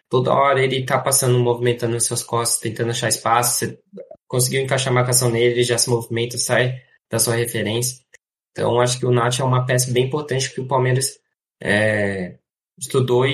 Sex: male